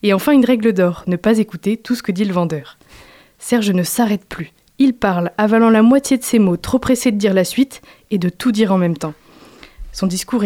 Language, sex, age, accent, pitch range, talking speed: French, female, 20-39, French, 185-225 Hz, 235 wpm